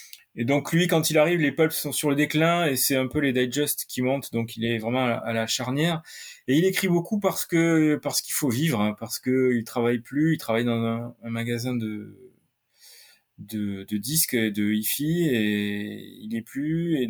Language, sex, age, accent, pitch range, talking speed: French, male, 20-39, French, 120-155 Hz, 205 wpm